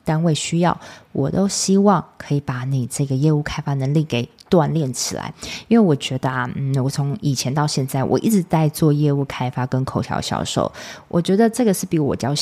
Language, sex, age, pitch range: Chinese, female, 20-39, 135-180 Hz